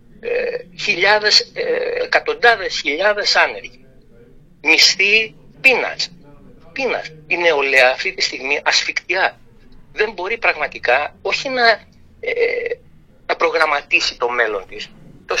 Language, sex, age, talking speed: Greek, male, 60-79, 85 wpm